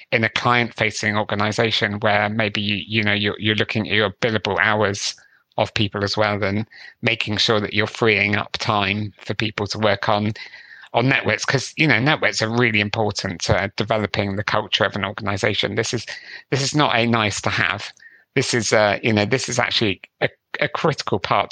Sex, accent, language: male, British, English